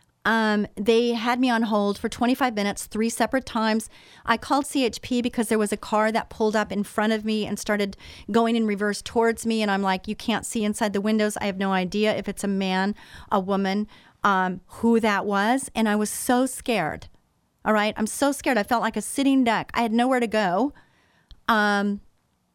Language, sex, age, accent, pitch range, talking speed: English, female, 40-59, American, 200-235 Hz, 210 wpm